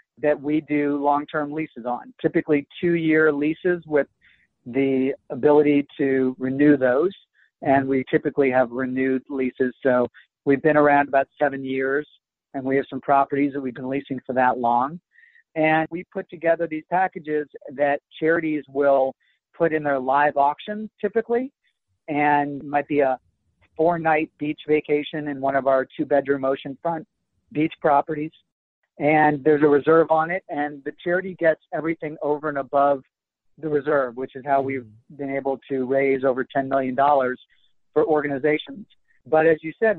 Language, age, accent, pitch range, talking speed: English, 50-69, American, 135-155 Hz, 155 wpm